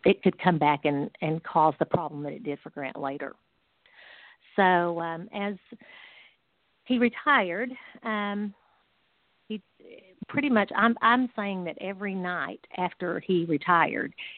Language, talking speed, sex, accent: English, 140 wpm, female, American